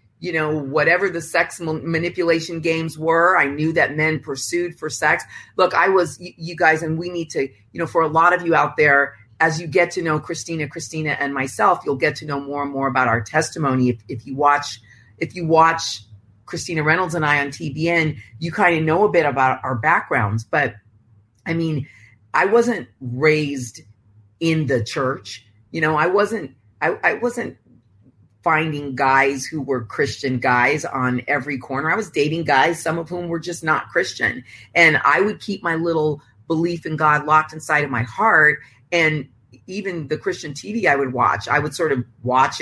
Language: English